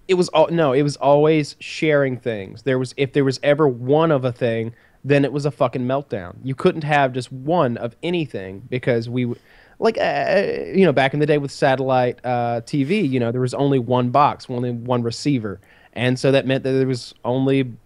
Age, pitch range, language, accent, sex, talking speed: 20-39, 130-160 Hz, English, American, male, 215 wpm